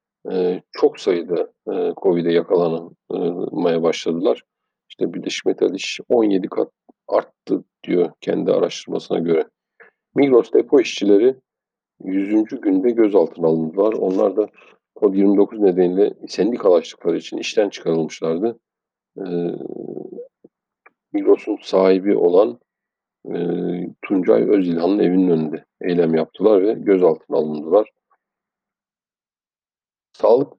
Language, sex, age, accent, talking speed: Turkish, male, 50-69, native, 90 wpm